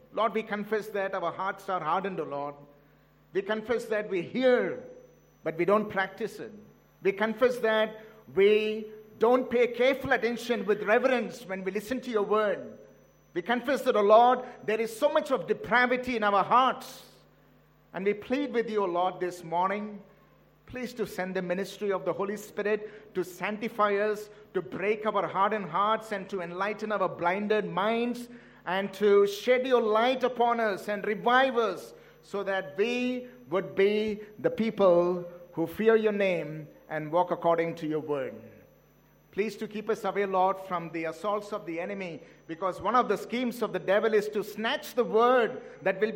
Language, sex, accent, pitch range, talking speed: English, male, Indian, 195-245 Hz, 175 wpm